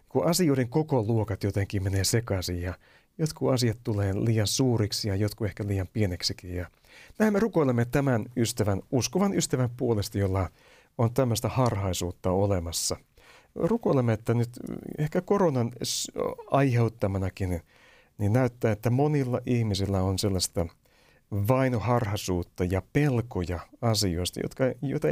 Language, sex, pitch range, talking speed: Finnish, male, 95-130 Hz, 125 wpm